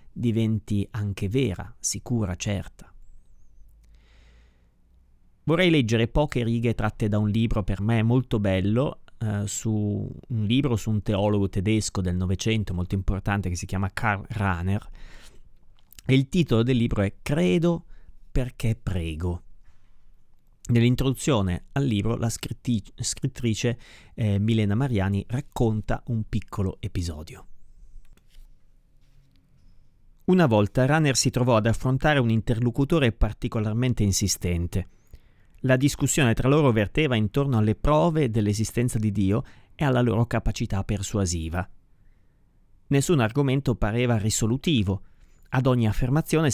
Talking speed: 115 wpm